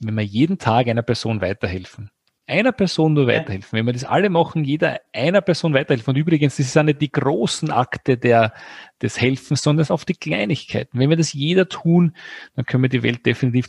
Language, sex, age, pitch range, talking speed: German, male, 40-59, 115-150 Hz, 215 wpm